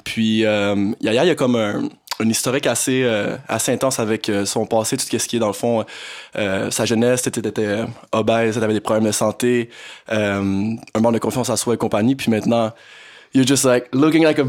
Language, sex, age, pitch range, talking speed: French, male, 20-39, 110-135 Hz, 215 wpm